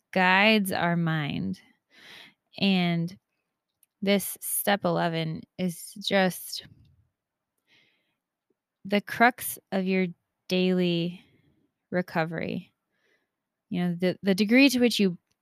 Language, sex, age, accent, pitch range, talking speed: English, female, 20-39, American, 170-205 Hz, 90 wpm